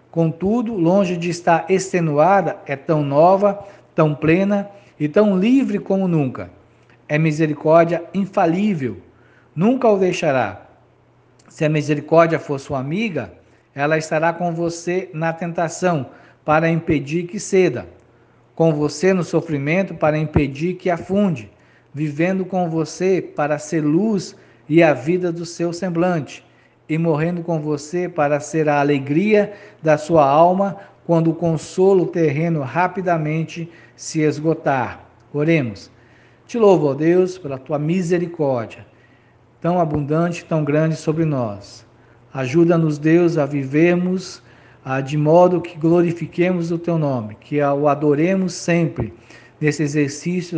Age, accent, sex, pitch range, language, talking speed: 50-69, Brazilian, male, 145-175 Hz, Portuguese, 125 wpm